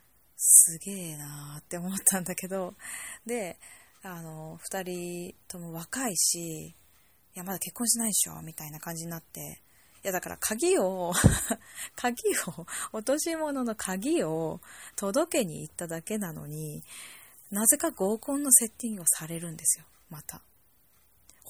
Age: 20-39